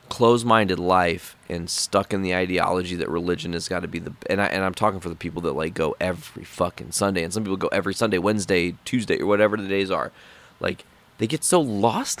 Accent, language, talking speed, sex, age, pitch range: American, English, 220 wpm, male, 30-49, 95-125 Hz